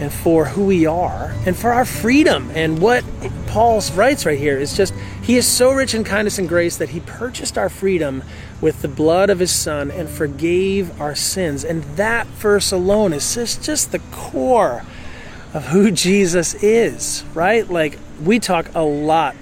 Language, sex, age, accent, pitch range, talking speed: English, male, 30-49, American, 140-190 Hz, 180 wpm